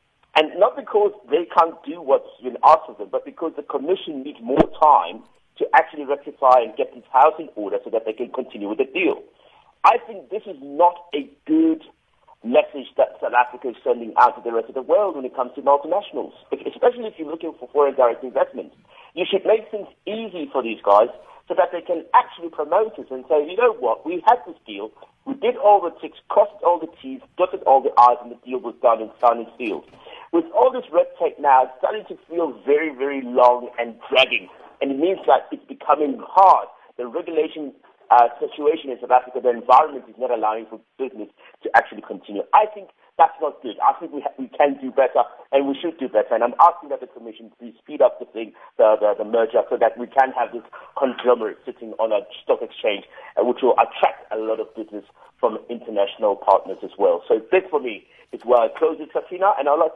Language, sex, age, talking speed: English, male, 50-69, 220 wpm